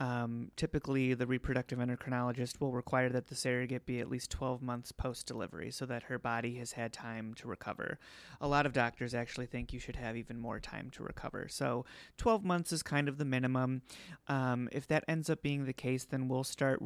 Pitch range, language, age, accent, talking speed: 120-135 Hz, English, 30-49, American, 205 wpm